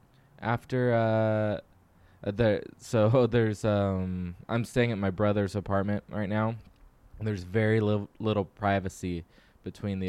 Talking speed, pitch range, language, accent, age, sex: 125 wpm, 95-115 Hz, English, American, 20-39, male